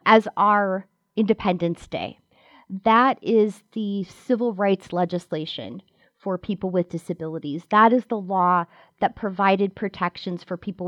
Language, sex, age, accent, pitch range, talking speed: English, female, 30-49, American, 180-225 Hz, 125 wpm